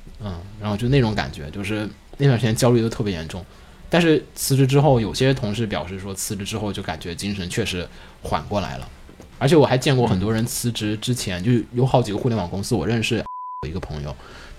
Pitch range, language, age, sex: 95-125 Hz, Chinese, 20-39, male